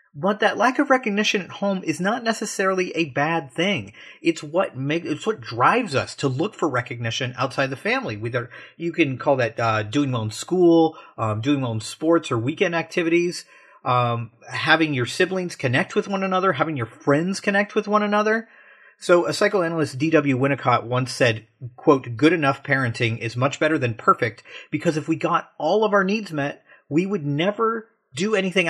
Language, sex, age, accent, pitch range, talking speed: English, male, 30-49, American, 125-180 Hz, 190 wpm